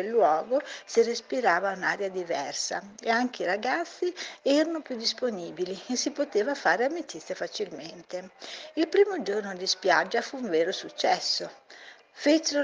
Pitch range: 190-280 Hz